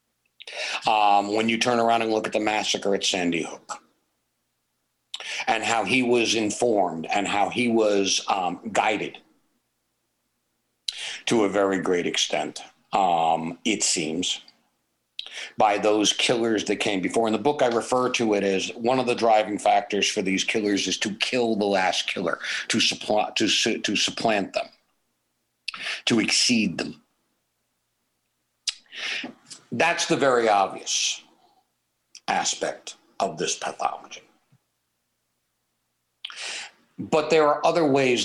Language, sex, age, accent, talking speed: English, male, 60-79, American, 125 wpm